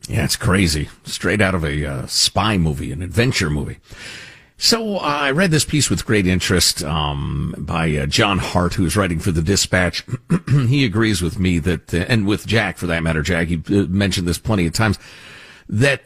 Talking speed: 200 wpm